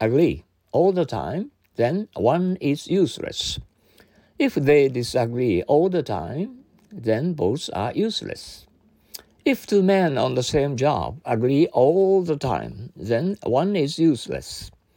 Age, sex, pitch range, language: 60-79, male, 105-170 Hz, Japanese